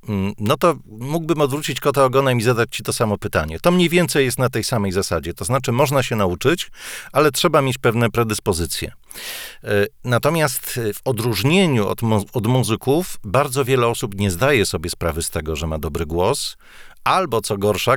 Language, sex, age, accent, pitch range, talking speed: Polish, male, 40-59, native, 100-135 Hz, 175 wpm